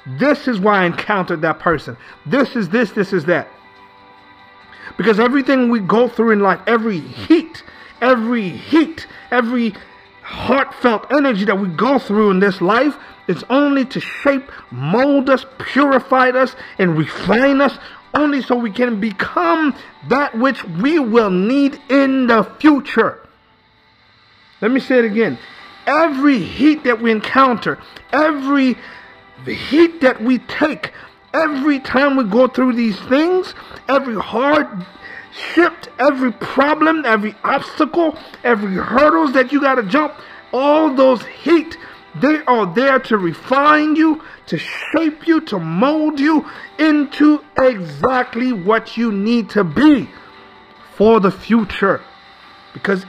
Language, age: English, 50-69